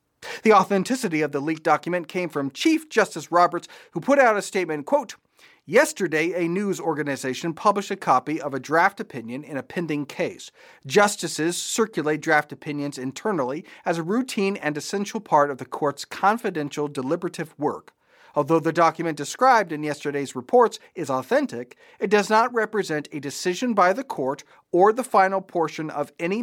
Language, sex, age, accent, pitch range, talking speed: English, male, 40-59, American, 145-190 Hz, 165 wpm